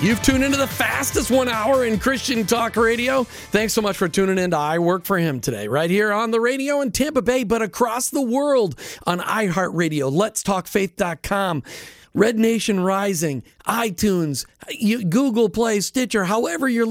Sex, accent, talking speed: male, American, 170 wpm